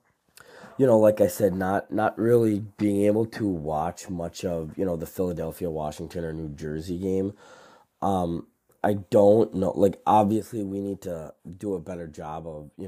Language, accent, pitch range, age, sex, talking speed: English, American, 85-100 Hz, 30-49, male, 175 wpm